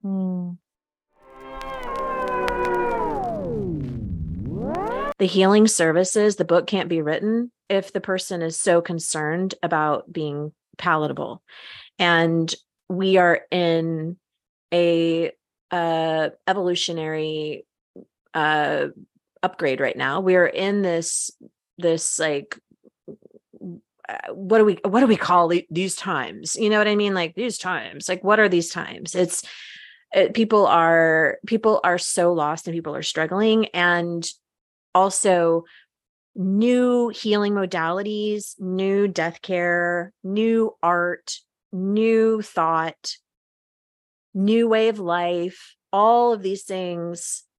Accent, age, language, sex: American, 30-49, English, female